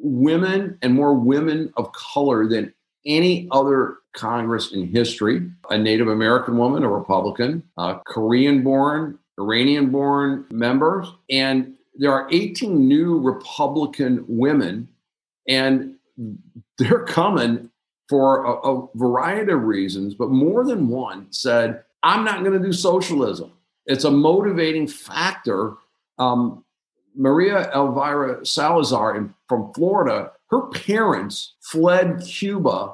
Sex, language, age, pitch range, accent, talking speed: male, English, 50-69, 115-170 Hz, American, 115 wpm